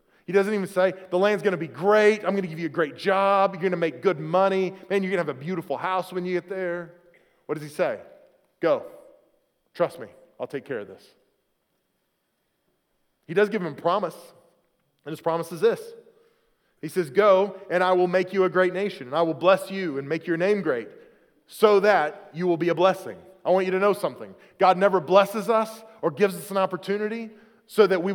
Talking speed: 215 wpm